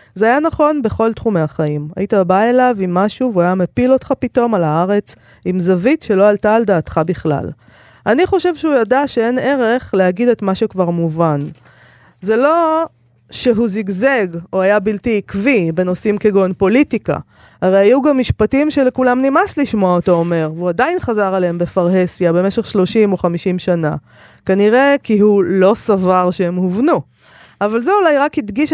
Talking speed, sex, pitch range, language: 165 wpm, female, 175-240 Hz, Hebrew